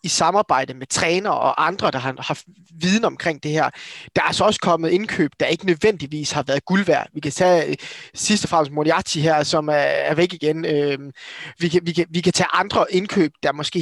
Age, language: 20-39, Danish